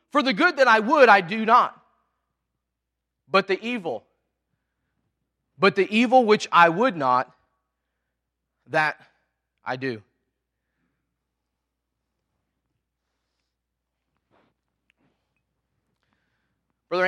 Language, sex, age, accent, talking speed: English, male, 30-49, American, 80 wpm